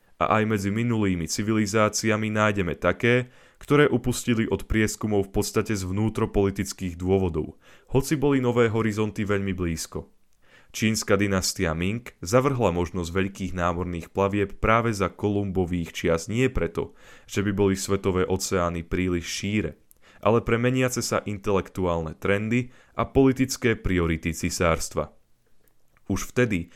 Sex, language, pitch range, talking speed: male, Slovak, 95-115 Hz, 120 wpm